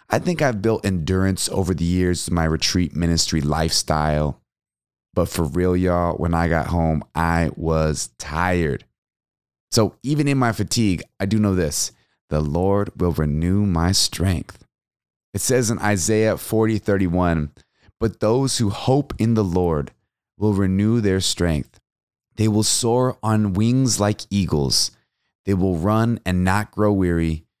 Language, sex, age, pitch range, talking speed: English, male, 30-49, 85-110 Hz, 155 wpm